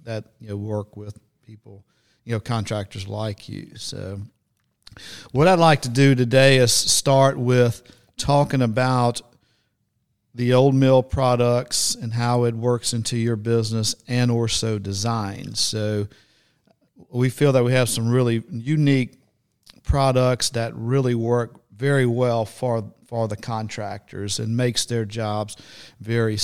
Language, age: English, 50-69